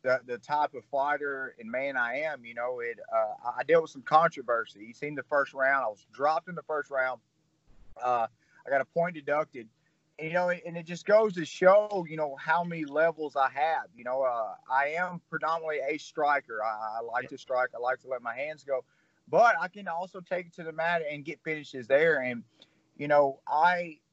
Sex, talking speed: male, 220 wpm